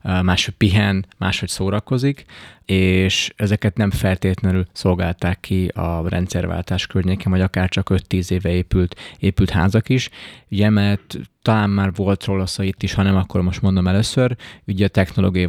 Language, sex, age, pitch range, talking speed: Hungarian, male, 20-39, 90-100 Hz, 150 wpm